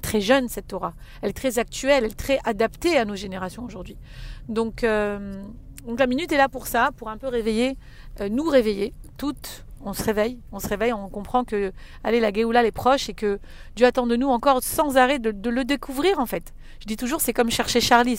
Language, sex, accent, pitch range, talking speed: French, female, French, 210-250 Hz, 230 wpm